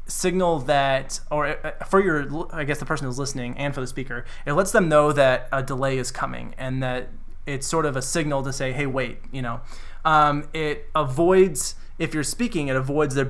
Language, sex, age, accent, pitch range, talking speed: English, male, 20-39, American, 130-155 Hz, 210 wpm